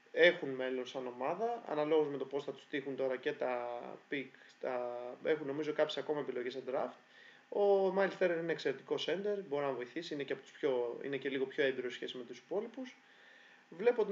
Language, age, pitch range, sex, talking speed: Greek, 20-39, 130-165 Hz, male, 200 wpm